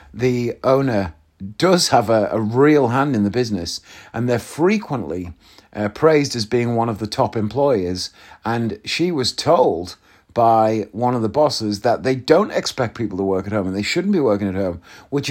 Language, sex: English, male